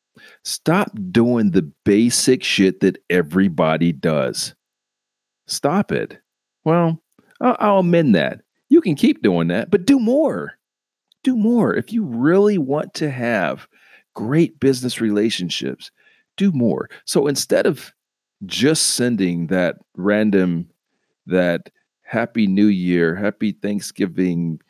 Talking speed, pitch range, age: 120 wpm, 90-155 Hz, 40-59